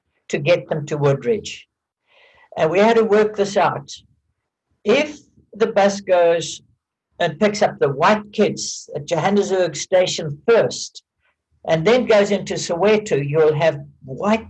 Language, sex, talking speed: English, male, 140 wpm